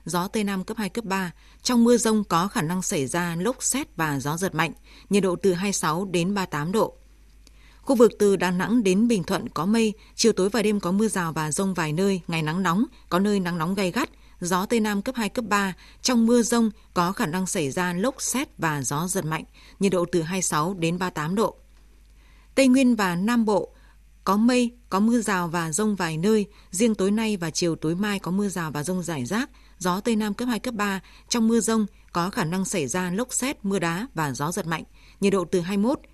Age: 20-39